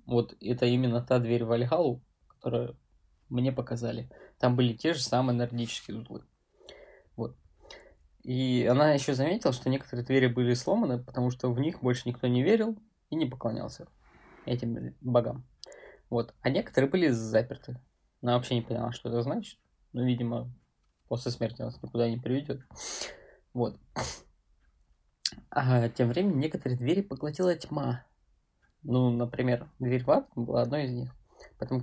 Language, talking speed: Russian, 145 wpm